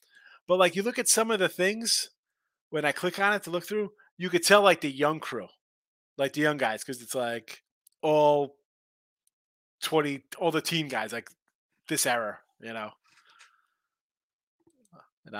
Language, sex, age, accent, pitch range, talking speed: English, male, 30-49, American, 130-180 Hz, 170 wpm